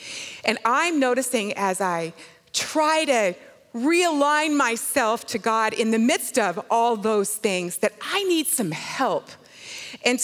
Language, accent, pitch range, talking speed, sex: English, American, 190-265 Hz, 140 wpm, female